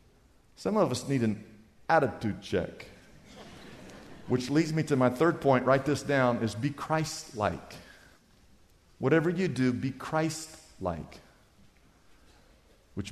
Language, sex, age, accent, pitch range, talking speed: English, male, 50-69, American, 110-155 Hz, 120 wpm